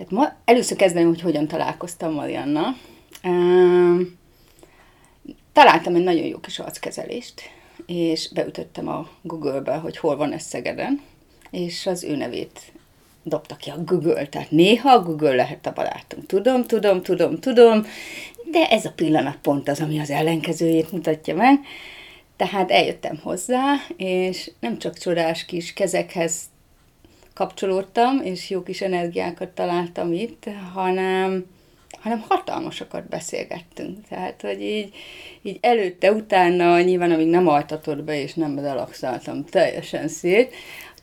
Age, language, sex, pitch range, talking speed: 30-49, Hungarian, female, 165-215 Hz, 130 wpm